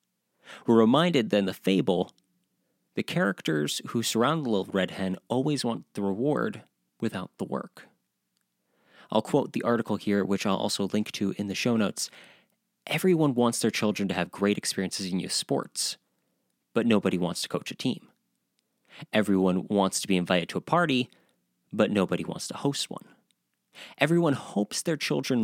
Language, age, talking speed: English, 30-49, 165 wpm